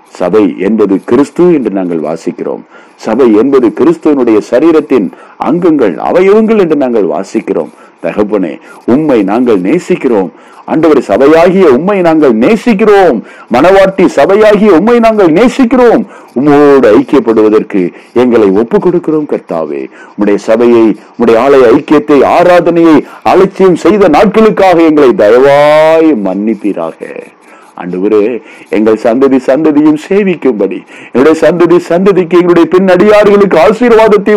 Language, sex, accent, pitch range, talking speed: Tamil, male, native, 140-215 Hz, 90 wpm